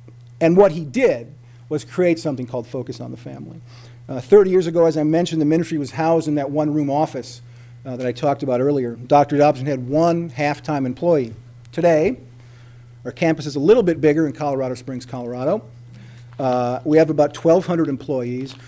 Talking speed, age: 185 wpm, 40-59